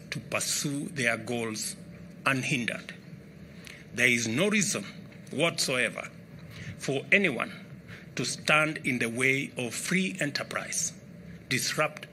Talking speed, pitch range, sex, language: 105 wpm, 140-185 Hz, male, English